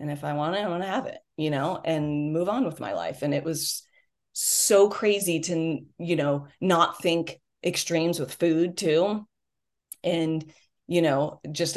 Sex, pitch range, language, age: female, 150-175 Hz, English, 30-49